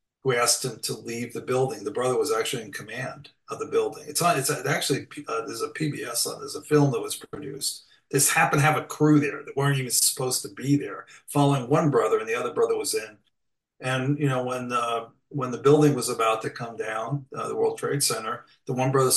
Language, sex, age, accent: English, male, 50-69, American